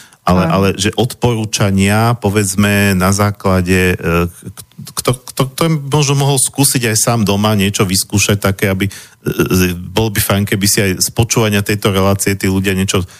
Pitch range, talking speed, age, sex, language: 95-110 Hz, 140 wpm, 40-59, male, Slovak